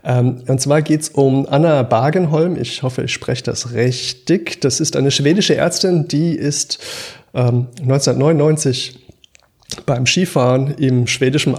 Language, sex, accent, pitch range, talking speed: German, male, German, 130-160 Hz, 130 wpm